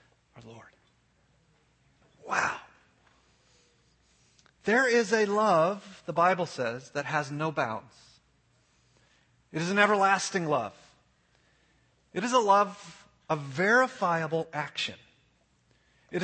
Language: English